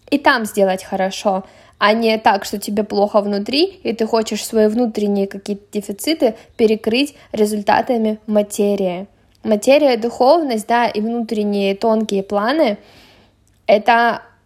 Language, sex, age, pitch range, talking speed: Russian, female, 20-39, 210-245 Hz, 125 wpm